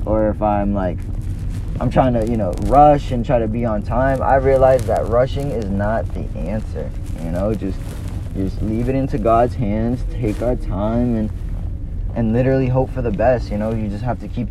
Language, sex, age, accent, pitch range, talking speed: English, male, 20-39, American, 90-120 Hz, 205 wpm